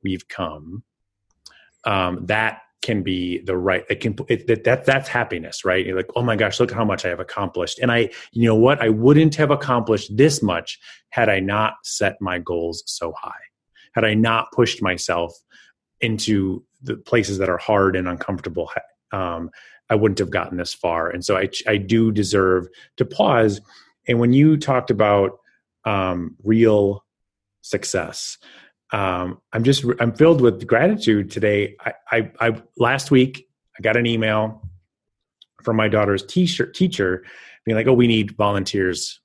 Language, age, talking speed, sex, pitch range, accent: English, 30-49, 170 wpm, male, 95-120 Hz, American